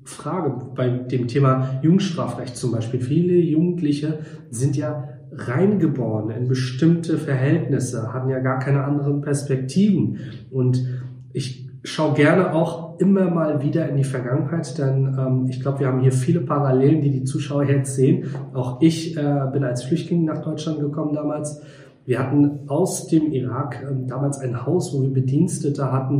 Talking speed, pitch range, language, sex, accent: 160 wpm, 130-160 Hz, German, male, German